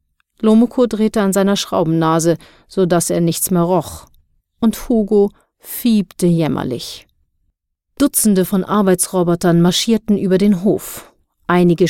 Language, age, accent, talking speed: German, 40-59, German, 110 wpm